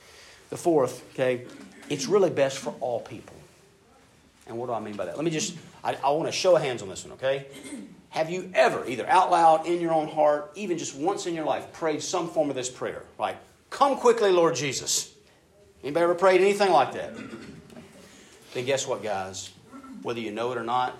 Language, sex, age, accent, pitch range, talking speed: English, male, 50-69, American, 120-205 Hz, 205 wpm